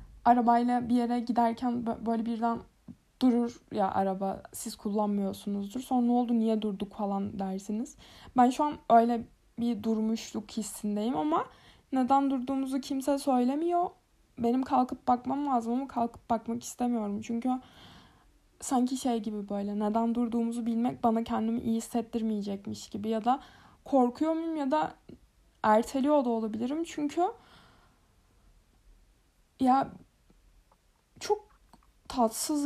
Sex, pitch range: female, 215-255 Hz